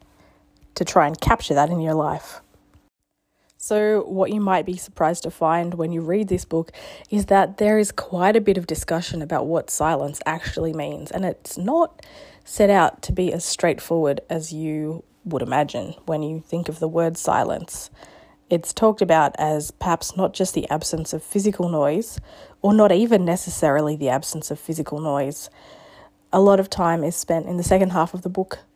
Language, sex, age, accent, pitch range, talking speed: English, female, 20-39, Australian, 155-195 Hz, 185 wpm